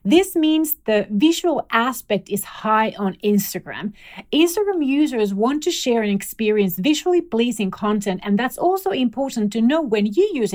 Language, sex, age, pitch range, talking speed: English, female, 30-49, 190-265 Hz, 160 wpm